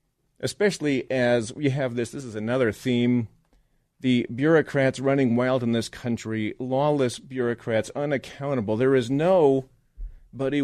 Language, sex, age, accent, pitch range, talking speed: English, male, 40-59, American, 125-165 Hz, 130 wpm